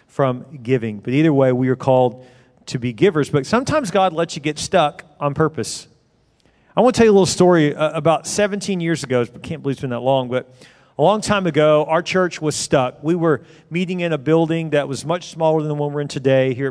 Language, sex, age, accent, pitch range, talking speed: English, male, 40-59, American, 130-155 Hz, 235 wpm